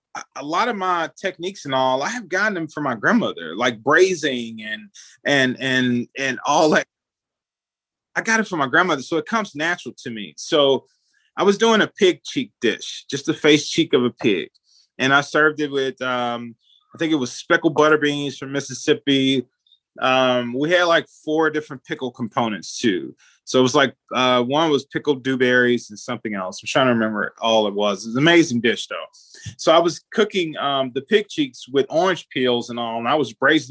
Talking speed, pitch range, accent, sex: 205 wpm, 125-170 Hz, American, male